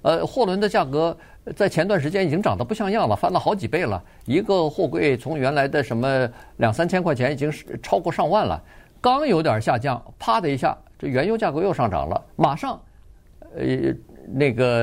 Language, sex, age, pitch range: Chinese, male, 50-69, 105-150 Hz